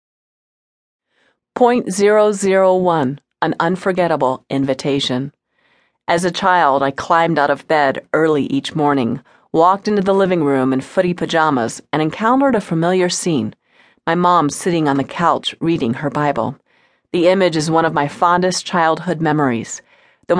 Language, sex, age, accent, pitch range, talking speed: English, female, 40-59, American, 140-185 Hz, 145 wpm